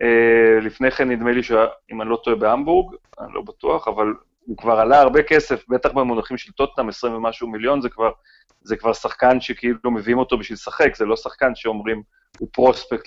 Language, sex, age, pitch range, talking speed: Hebrew, male, 30-49, 110-150 Hz, 200 wpm